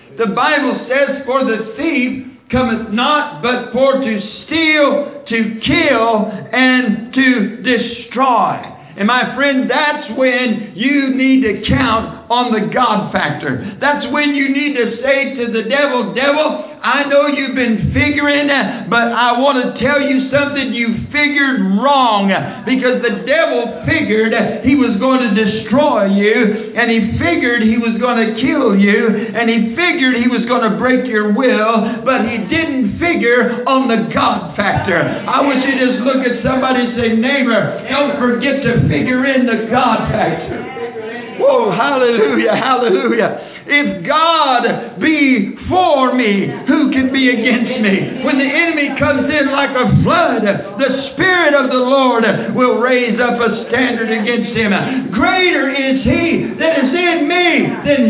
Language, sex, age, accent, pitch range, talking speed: English, male, 60-79, American, 225-280 Hz, 155 wpm